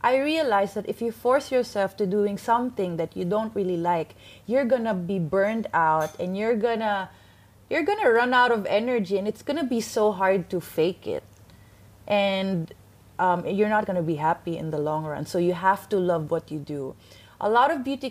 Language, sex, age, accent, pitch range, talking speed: English, female, 20-39, Filipino, 180-235 Hz, 200 wpm